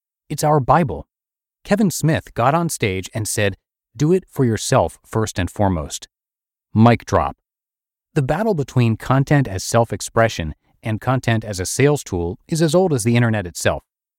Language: English